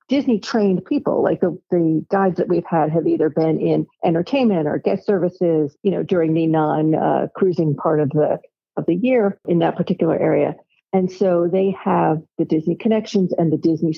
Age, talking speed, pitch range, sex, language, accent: 50-69, 195 wpm, 165-205 Hz, female, English, American